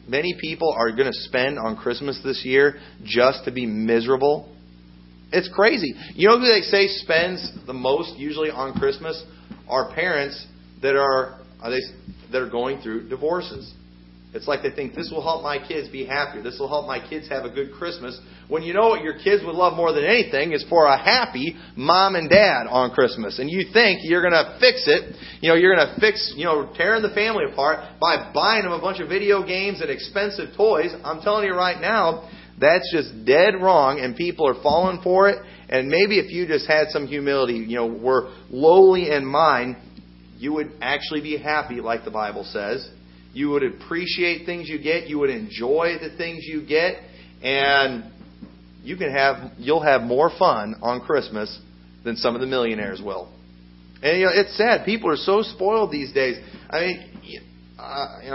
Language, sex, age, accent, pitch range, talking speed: English, male, 40-59, American, 120-175 Hz, 190 wpm